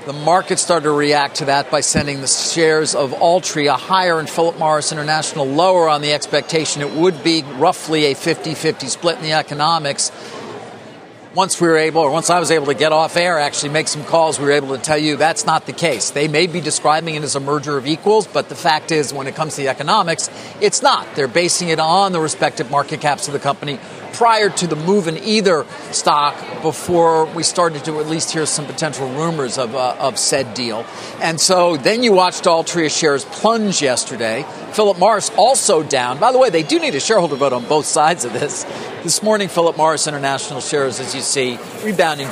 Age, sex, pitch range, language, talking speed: 50-69, male, 145-170 Hz, English, 215 wpm